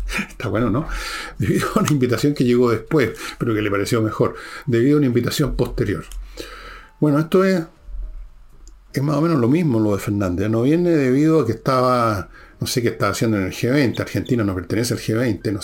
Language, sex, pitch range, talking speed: Spanish, male, 105-135 Hz, 200 wpm